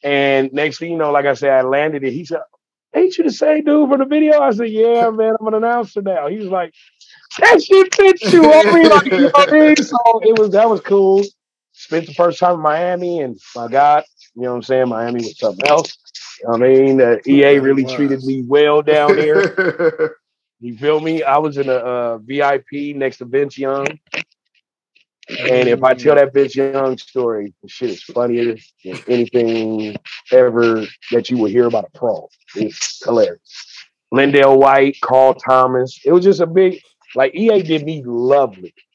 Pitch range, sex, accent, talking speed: 130-180 Hz, male, American, 195 wpm